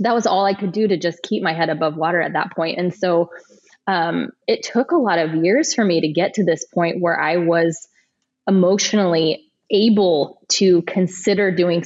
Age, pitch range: 20-39, 165-205 Hz